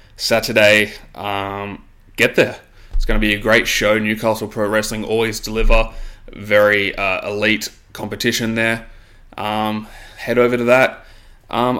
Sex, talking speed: male, 135 wpm